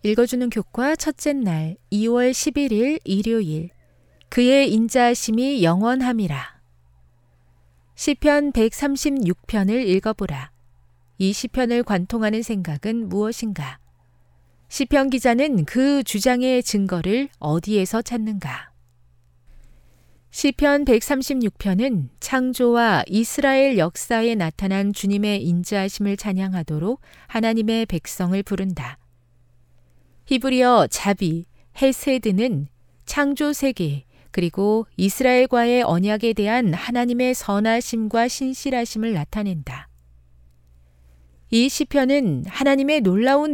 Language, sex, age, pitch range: Korean, female, 40-59, 165-250 Hz